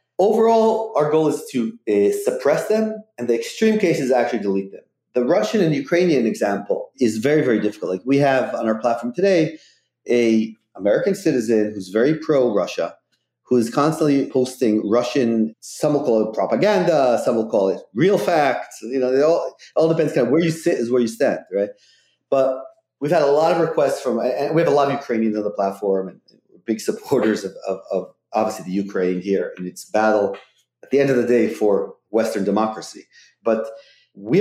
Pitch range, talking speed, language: 110-160 Hz, 195 wpm, English